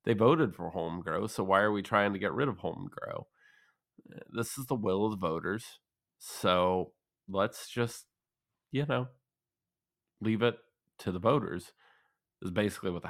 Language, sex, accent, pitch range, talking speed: English, male, American, 90-110 Hz, 160 wpm